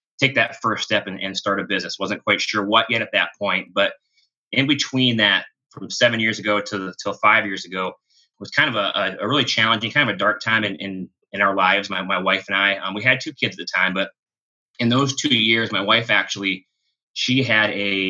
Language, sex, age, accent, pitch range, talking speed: English, male, 30-49, American, 95-115 Hz, 240 wpm